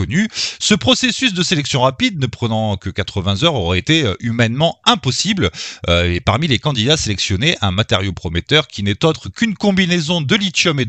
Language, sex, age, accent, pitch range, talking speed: French, male, 30-49, French, 100-165 Hz, 175 wpm